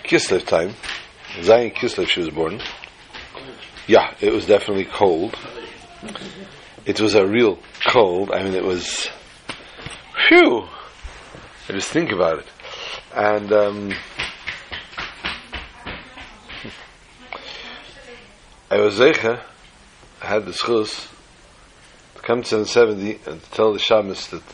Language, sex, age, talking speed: English, male, 50-69, 115 wpm